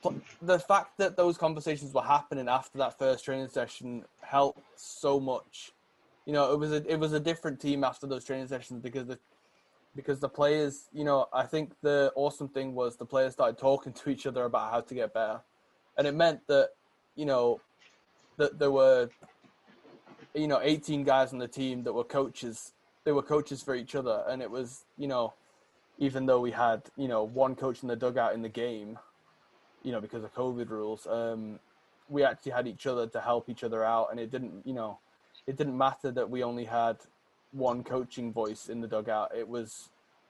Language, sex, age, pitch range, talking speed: English, male, 20-39, 120-140 Hz, 200 wpm